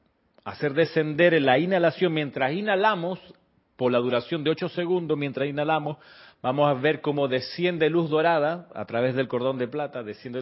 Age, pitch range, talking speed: 40-59, 130-165 Hz, 165 wpm